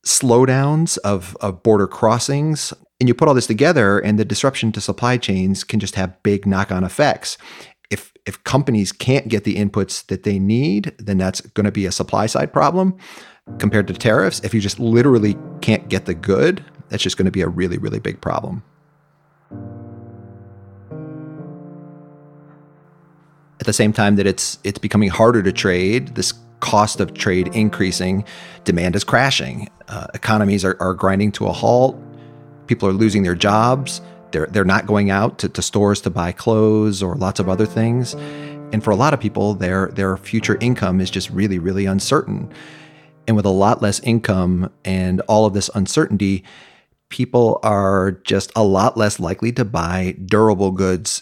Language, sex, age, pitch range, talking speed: English, male, 30-49, 95-125 Hz, 175 wpm